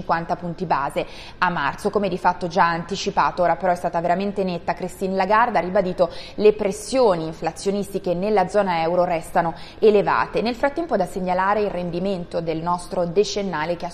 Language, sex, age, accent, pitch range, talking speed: Italian, female, 20-39, native, 170-205 Hz, 165 wpm